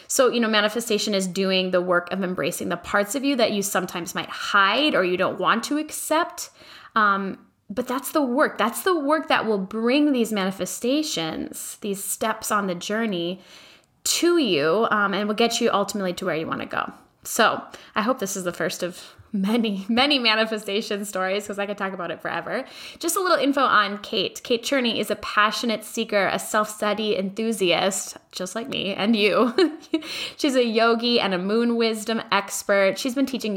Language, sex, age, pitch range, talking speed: English, female, 10-29, 180-230 Hz, 190 wpm